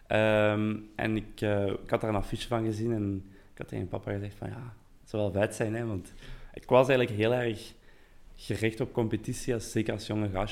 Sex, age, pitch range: male, 20-39, 100-115 Hz